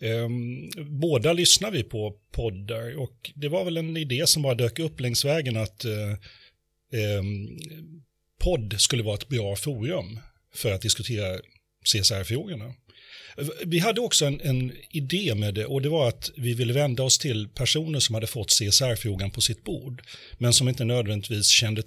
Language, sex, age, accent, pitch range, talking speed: Swedish, male, 30-49, native, 110-140 Hz, 165 wpm